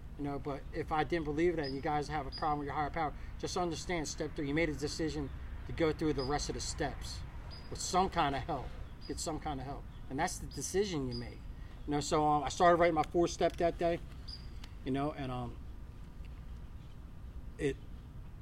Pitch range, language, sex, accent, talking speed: 130-165 Hz, English, male, American, 215 wpm